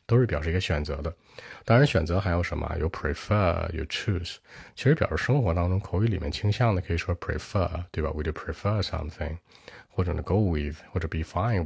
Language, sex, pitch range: Chinese, male, 80-100 Hz